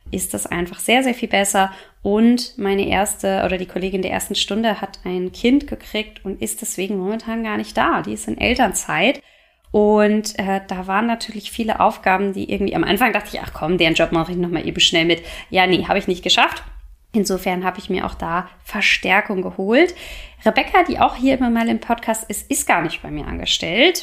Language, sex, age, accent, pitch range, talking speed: German, female, 20-39, German, 180-225 Hz, 205 wpm